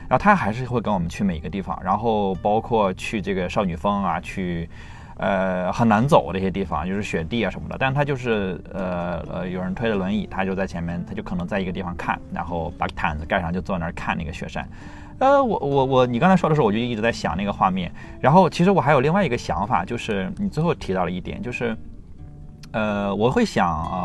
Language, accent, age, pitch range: Chinese, native, 20-39, 90-130 Hz